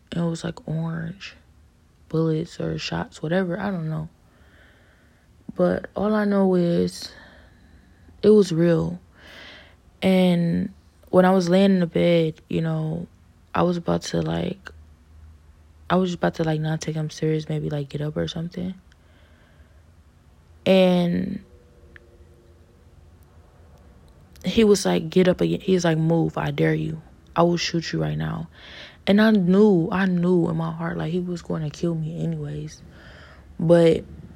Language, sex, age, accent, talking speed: English, female, 20-39, American, 150 wpm